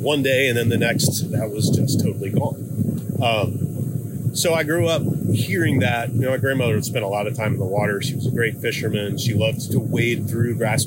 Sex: male